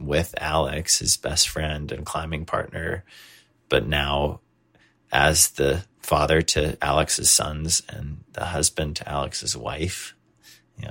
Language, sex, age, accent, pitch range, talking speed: English, male, 30-49, American, 75-85 Hz, 125 wpm